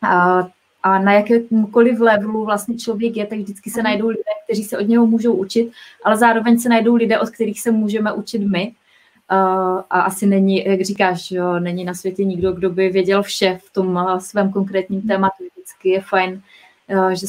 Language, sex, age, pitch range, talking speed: Czech, female, 20-39, 195-235 Hz, 175 wpm